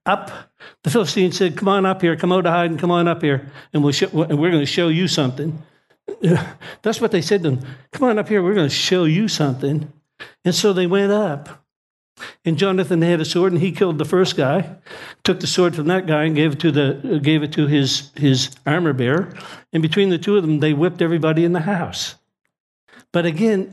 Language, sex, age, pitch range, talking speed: English, male, 60-79, 150-190 Hz, 230 wpm